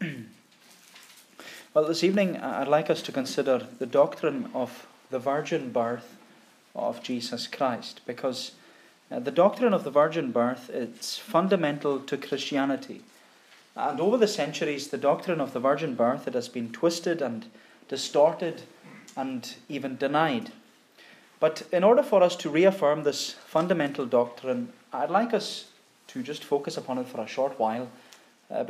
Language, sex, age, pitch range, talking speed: English, male, 20-39, 130-170 Hz, 145 wpm